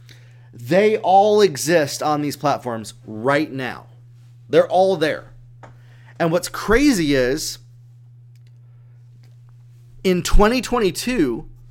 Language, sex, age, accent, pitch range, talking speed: English, male, 30-49, American, 120-195 Hz, 85 wpm